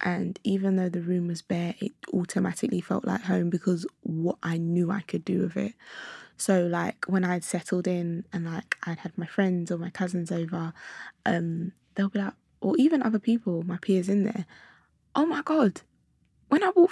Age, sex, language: 10-29, female, English